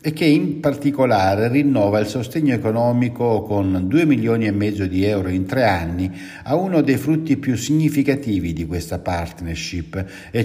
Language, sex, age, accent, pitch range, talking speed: Italian, male, 60-79, native, 110-150 Hz, 160 wpm